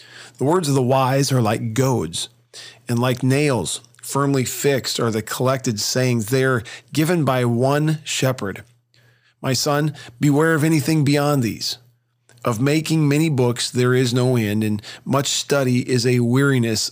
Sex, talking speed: male, 155 wpm